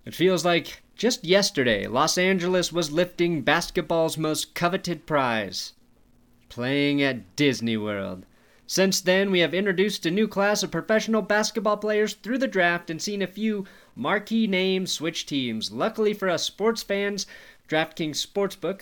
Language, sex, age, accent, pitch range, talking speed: English, male, 30-49, American, 145-200 Hz, 150 wpm